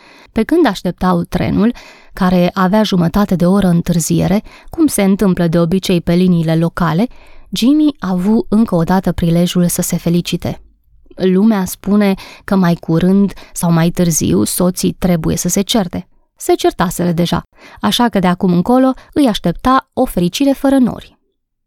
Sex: female